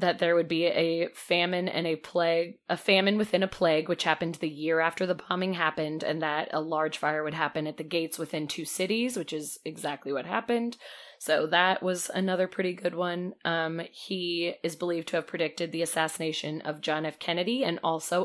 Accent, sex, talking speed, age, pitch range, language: American, female, 205 wpm, 20-39, 160-185 Hz, English